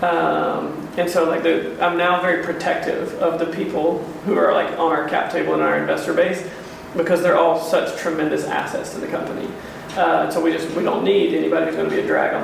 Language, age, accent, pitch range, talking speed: English, 40-59, American, 165-195 Hz, 225 wpm